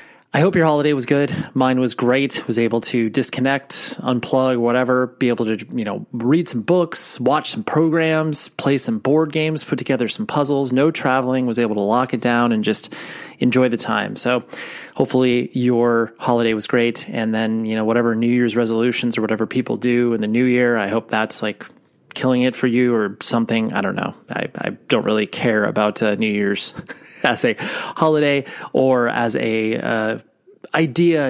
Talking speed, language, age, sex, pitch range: 190 wpm, English, 30-49, male, 115-145 Hz